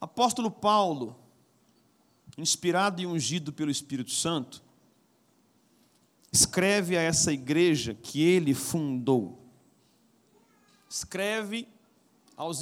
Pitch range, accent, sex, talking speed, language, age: 165-215 Hz, Brazilian, male, 80 wpm, Portuguese, 40-59